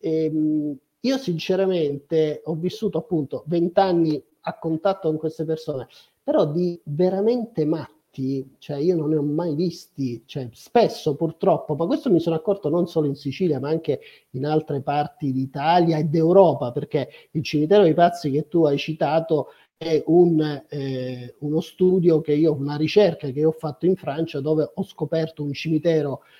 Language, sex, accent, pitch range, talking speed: Italian, male, native, 145-170 Hz, 160 wpm